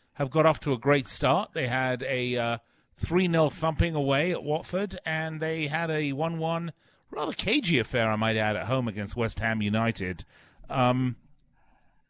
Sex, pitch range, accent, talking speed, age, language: male, 110-150 Hz, British, 170 wpm, 40-59, English